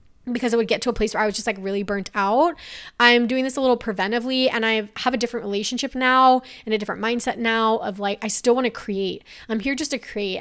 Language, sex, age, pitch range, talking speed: English, female, 20-39, 210-250 Hz, 260 wpm